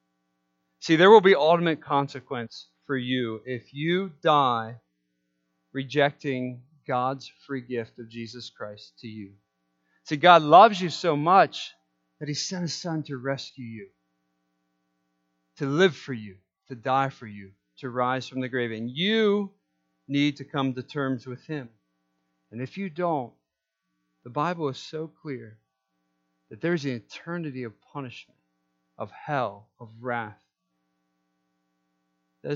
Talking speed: 140 wpm